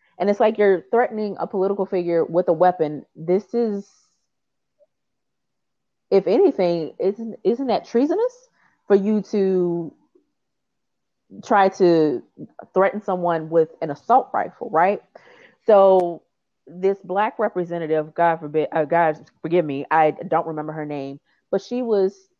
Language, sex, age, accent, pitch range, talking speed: English, female, 30-49, American, 160-200 Hz, 130 wpm